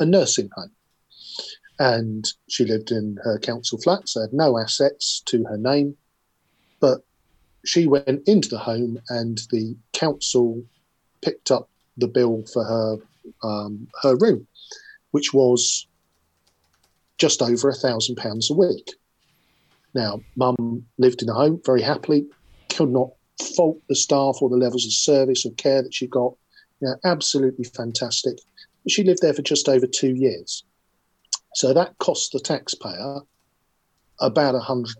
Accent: British